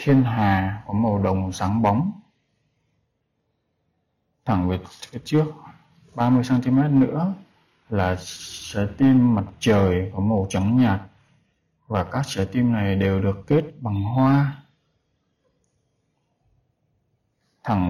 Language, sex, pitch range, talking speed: Vietnamese, male, 105-140 Hz, 110 wpm